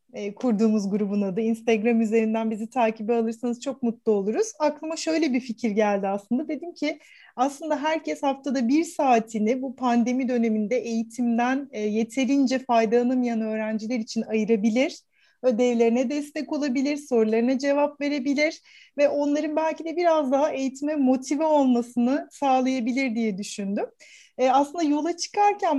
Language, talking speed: Turkish, 130 wpm